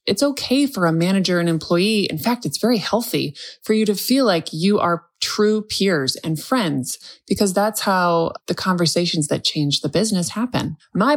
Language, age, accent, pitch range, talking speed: English, 20-39, American, 165-220 Hz, 185 wpm